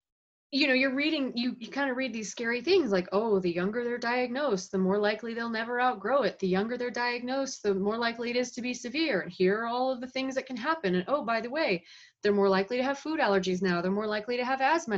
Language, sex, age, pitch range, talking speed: English, female, 30-49, 190-245 Hz, 265 wpm